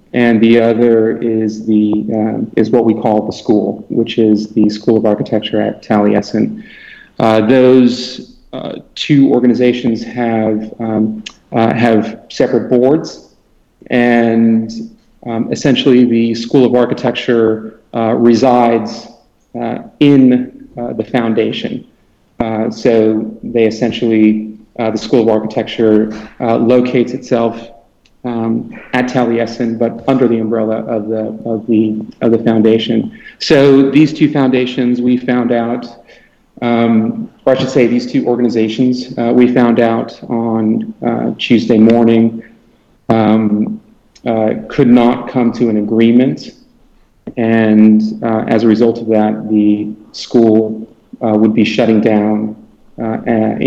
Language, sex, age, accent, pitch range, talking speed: English, male, 30-49, American, 110-120 Hz, 130 wpm